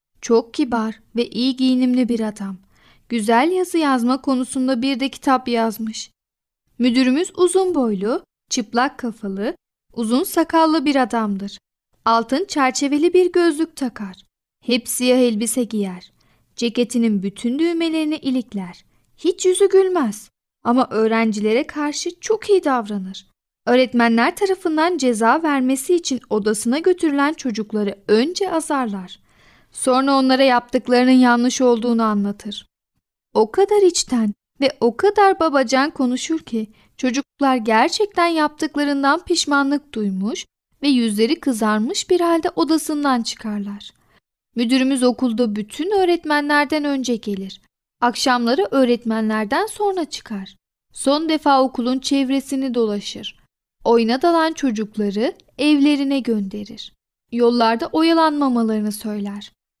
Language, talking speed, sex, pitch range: Turkish, 105 wpm, female, 225-300 Hz